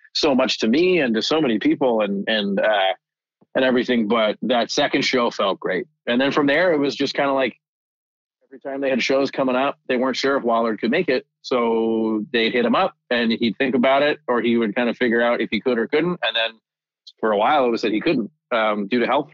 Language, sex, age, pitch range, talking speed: English, male, 30-49, 110-140 Hz, 250 wpm